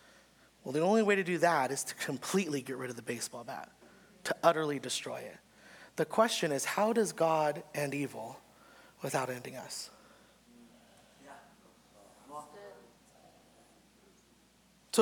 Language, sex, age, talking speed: English, male, 30-49, 130 wpm